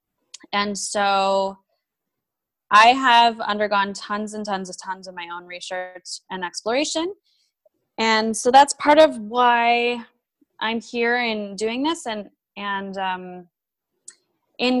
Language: English